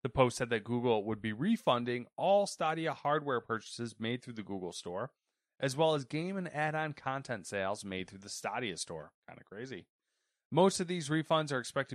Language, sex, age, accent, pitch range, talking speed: English, male, 30-49, American, 110-150 Hz, 195 wpm